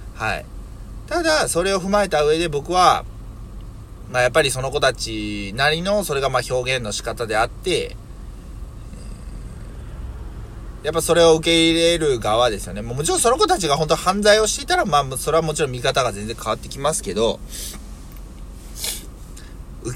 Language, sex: Japanese, male